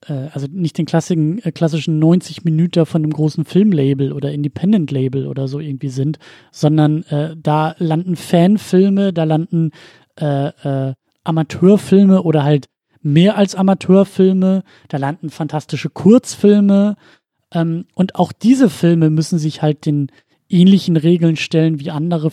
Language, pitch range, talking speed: German, 145-175 Hz, 135 wpm